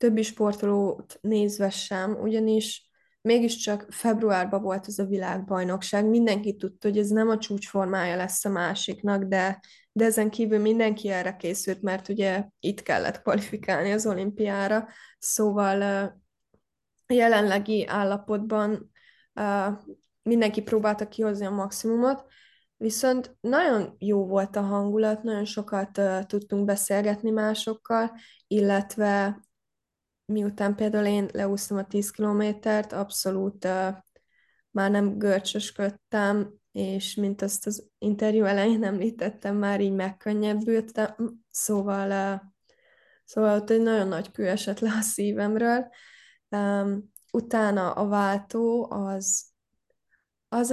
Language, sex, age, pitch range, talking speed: Hungarian, female, 20-39, 200-225 Hz, 110 wpm